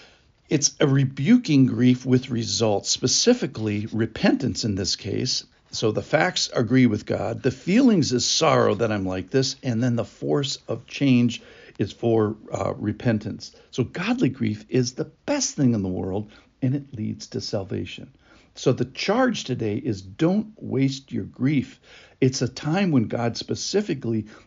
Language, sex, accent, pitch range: English, male, American, 110-140 Hz